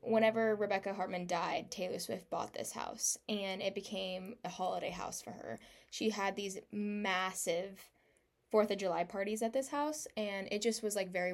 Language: English